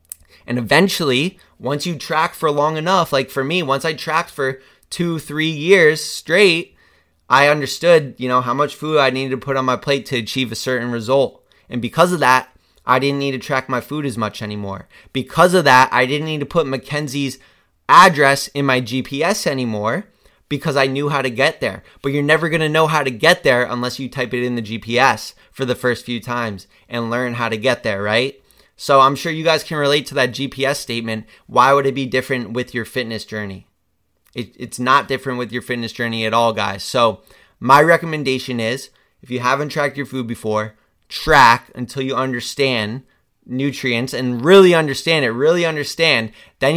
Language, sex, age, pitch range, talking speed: English, male, 20-39, 125-150 Hz, 200 wpm